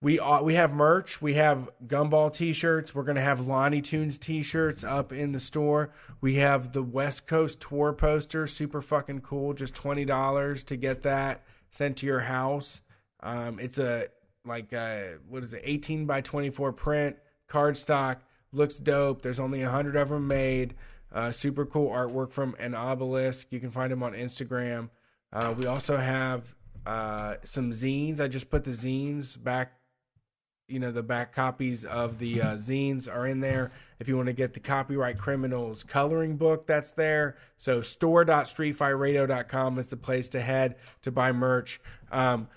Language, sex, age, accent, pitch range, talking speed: English, male, 20-39, American, 125-145 Hz, 175 wpm